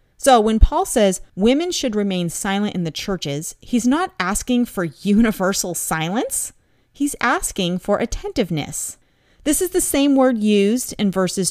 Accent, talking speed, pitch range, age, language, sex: American, 150 wpm, 170-240 Hz, 30-49, English, female